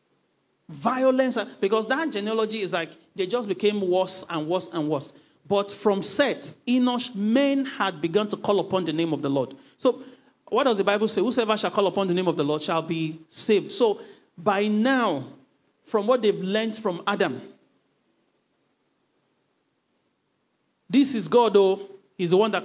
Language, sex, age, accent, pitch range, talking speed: English, male, 40-59, Nigerian, 180-230 Hz, 170 wpm